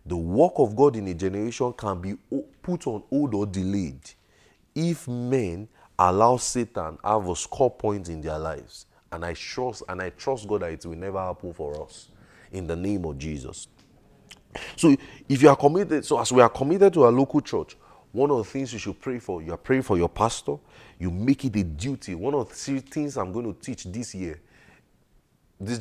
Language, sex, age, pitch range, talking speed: English, male, 30-49, 90-120 Hz, 205 wpm